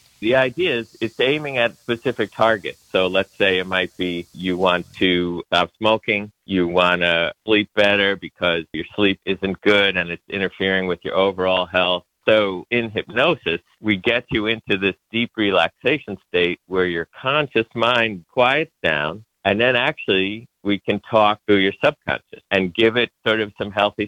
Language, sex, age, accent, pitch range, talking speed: English, male, 50-69, American, 90-110 Hz, 170 wpm